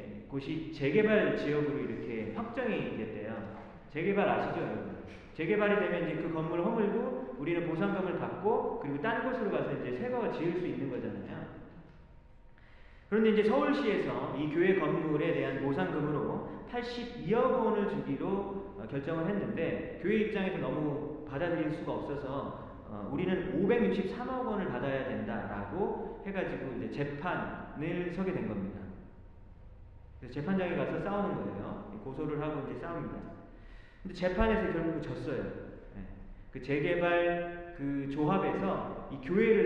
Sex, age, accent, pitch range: male, 40-59, native, 150-210 Hz